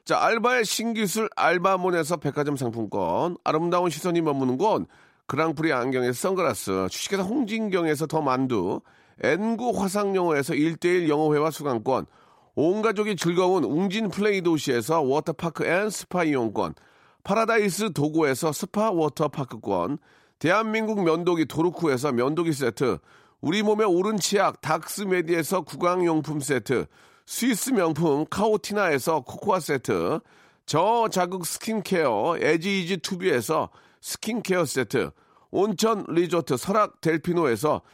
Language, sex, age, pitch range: Korean, male, 40-59, 155-210 Hz